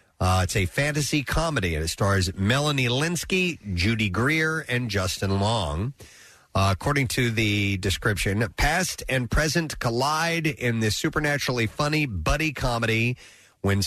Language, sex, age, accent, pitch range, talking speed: English, male, 40-59, American, 100-150 Hz, 135 wpm